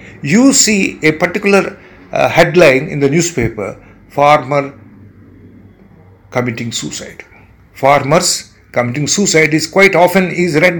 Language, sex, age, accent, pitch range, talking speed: English, male, 60-79, Indian, 110-180 Hz, 110 wpm